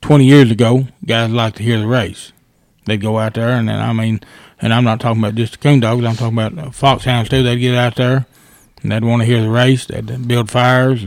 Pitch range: 115-130 Hz